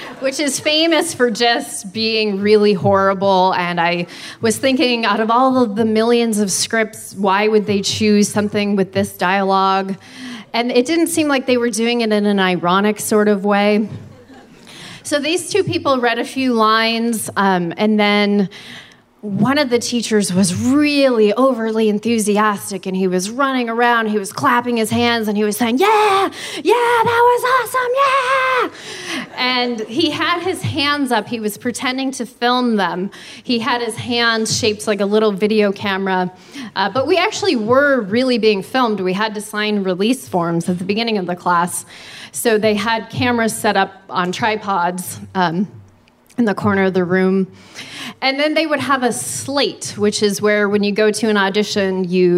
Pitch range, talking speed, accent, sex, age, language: 195-245 Hz, 180 wpm, American, female, 30-49, English